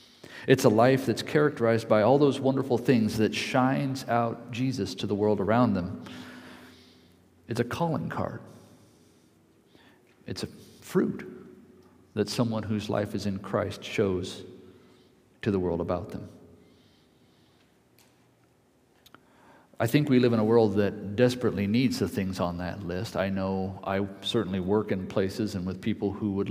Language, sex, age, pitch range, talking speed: English, male, 50-69, 95-125 Hz, 150 wpm